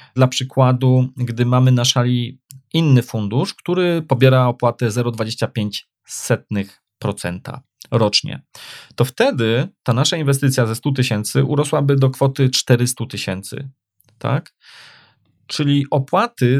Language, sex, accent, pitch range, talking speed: Polish, male, native, 120-135 Hz, 100 wpm